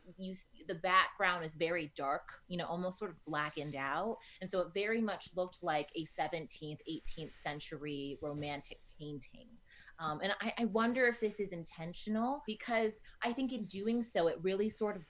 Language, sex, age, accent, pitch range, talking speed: English, female, 30-49, American, 150-190 Hz, 185 wpm